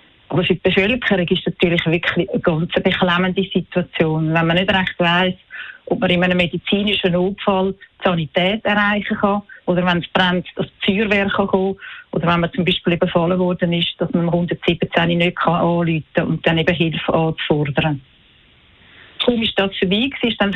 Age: 40-59